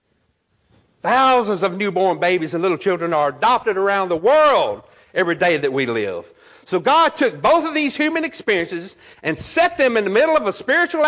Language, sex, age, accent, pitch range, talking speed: English, male, 60-79, American, 200-325 Hz, 185 wpm